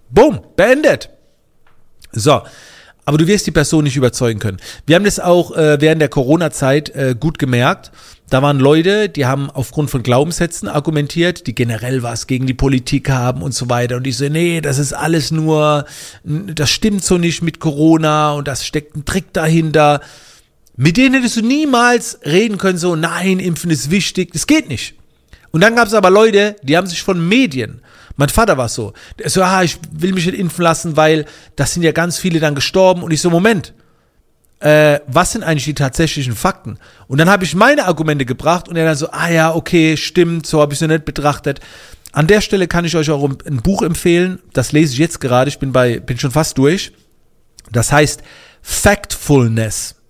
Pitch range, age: 140-175 Hz, 40-59